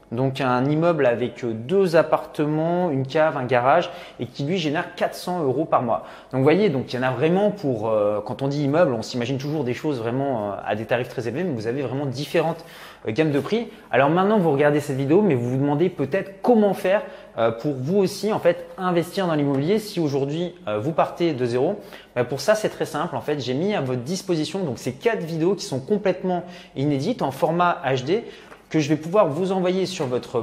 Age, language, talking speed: 20-39, French, 225 wpm